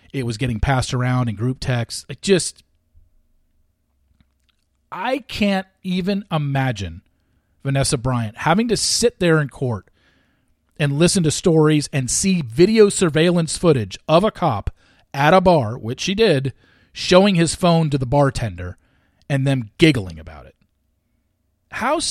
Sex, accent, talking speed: male, American, 140 wpm